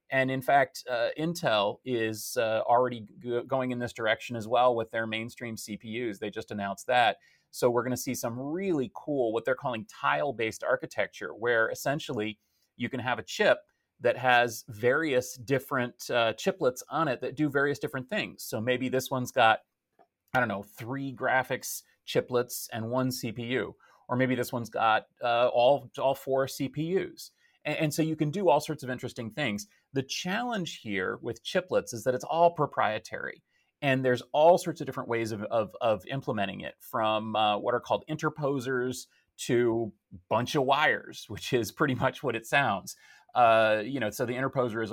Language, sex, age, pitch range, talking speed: English, male, 30-49, 115-140 Hz, 180 wpm